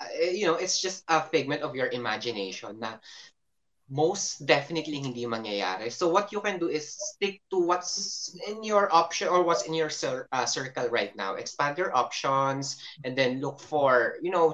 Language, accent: Filipino, native